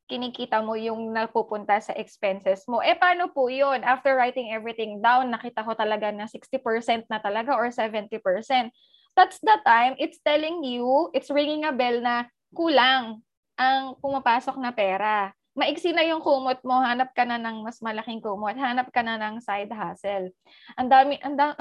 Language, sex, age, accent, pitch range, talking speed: Filipino, female, 20-39, native, 230-280 Hz, 165 wpm